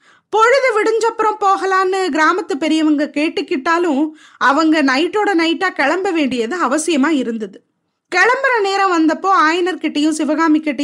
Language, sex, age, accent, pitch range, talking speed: Tamil, female, 20-39, native, 280-375 Hz, 100 wpm